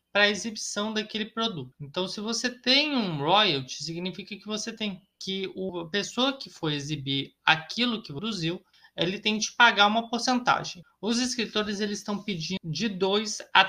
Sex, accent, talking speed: male, Brazilian, 170 wpm